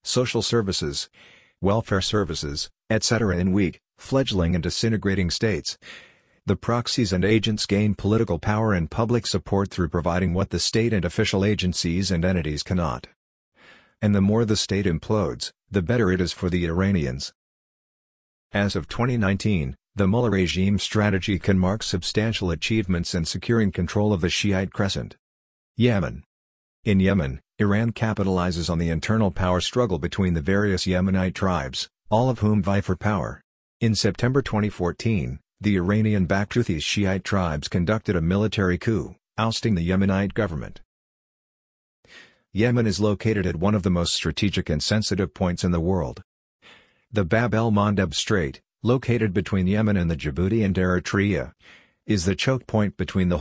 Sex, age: male, 50-69